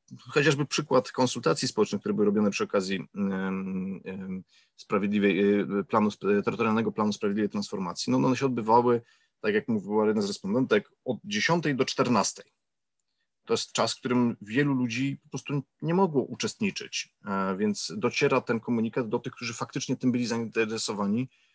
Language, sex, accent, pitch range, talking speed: Polish, male, native, 105-140 Hz, 145 wpm